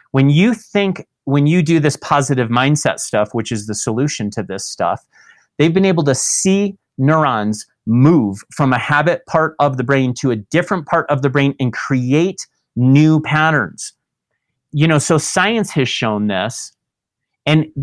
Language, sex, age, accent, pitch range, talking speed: English, male, 30-49, American, 125-155 Hz, 170 wpm